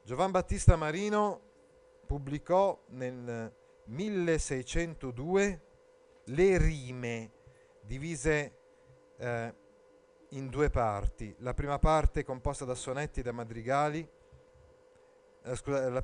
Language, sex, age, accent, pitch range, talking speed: Italian, male, 40-59, native, 115-155 Hz, 50 wpm